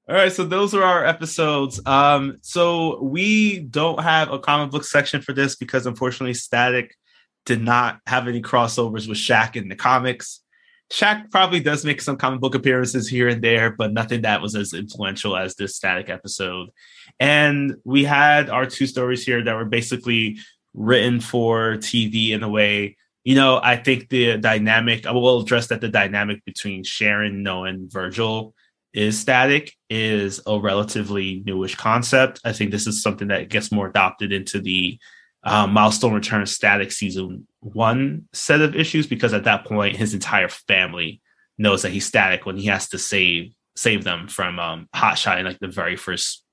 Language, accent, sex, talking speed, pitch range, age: English, American, male, 180 wpm, 105-140 Hz, 20-39